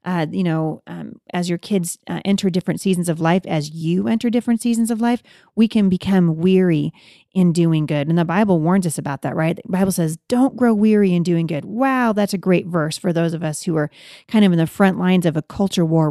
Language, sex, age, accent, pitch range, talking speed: English, female, 30-49, American, 175-210 Hz, 240 wpm